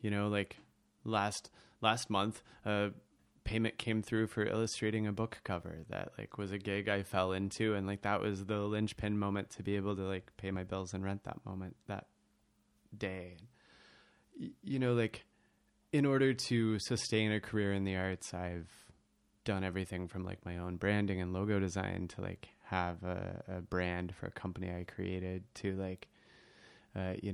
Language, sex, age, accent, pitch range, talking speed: English, male, 20-39, American, 95-110 Hz, 180 wpm